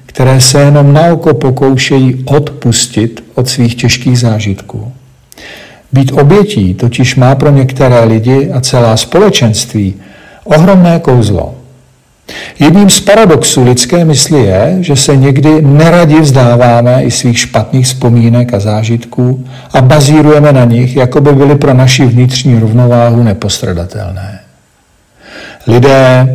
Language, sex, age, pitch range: Czech, male, 50-69, 120-145 Hz